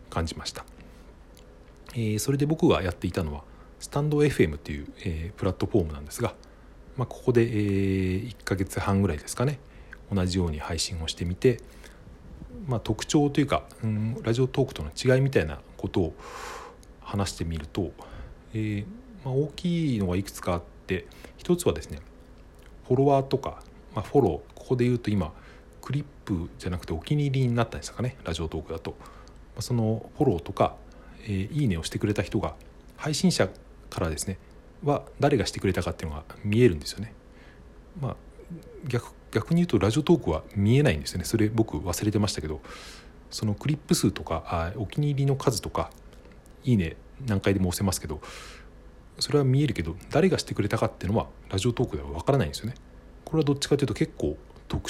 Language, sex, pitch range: Japanese, male, 85-130 Hz